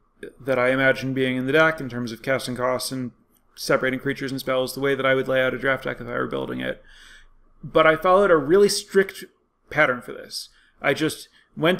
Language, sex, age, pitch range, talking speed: English, male, 30-49, 130-160 Hz, 225 wpm